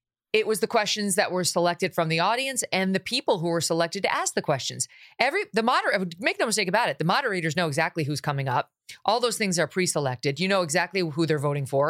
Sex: female